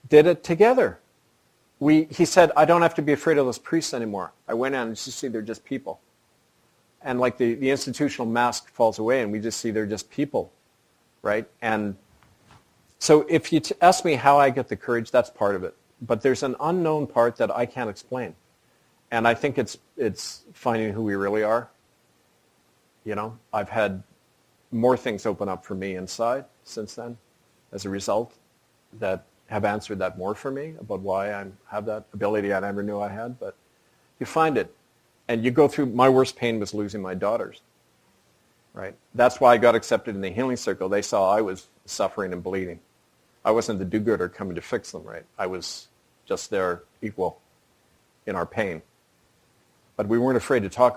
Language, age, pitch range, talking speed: English, 40-59, 105-140 Hz, 195 wpm